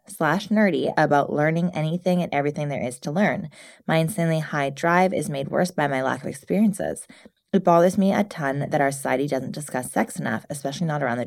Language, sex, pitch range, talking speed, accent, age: English, female, 140-185 Hz, 210 wpm, American, 20-39